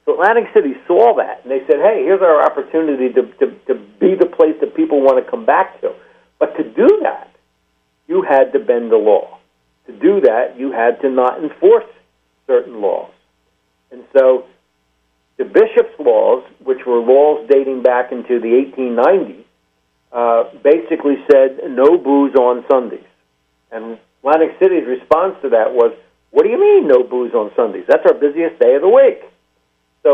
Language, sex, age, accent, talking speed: English, male, 60-79, American, 170 wpm